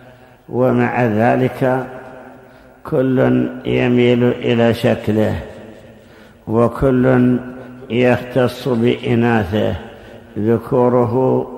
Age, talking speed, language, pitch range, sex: 60-79, 50 wpm, Arabic, 115-125 Hz, male